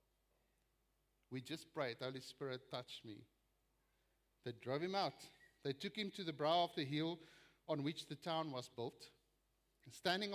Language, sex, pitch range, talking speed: English, male, 145-200 Hz, 155 wpm